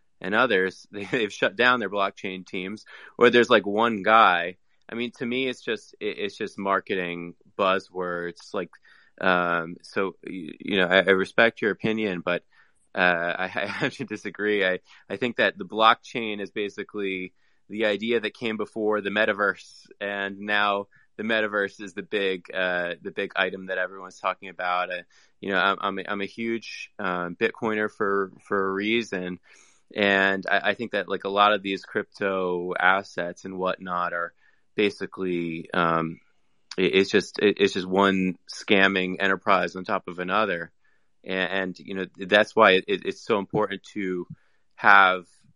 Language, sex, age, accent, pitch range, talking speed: English, male, 20-39, American, 90-105 Hz, 165 wpm